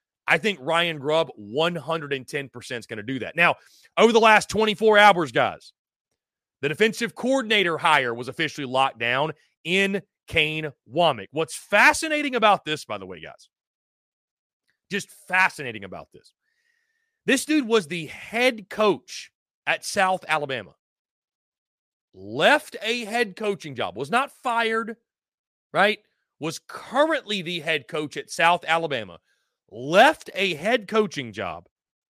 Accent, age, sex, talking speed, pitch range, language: American, 30-49, male, 135 wpm, 150-215 Hz, English